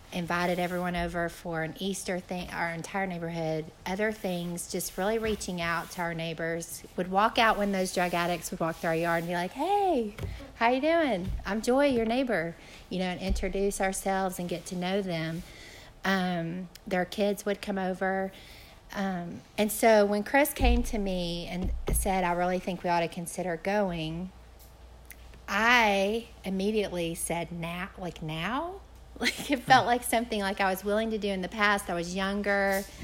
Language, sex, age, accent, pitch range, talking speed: English, female, 40-59, American, 170-205 Hz, 180 wpm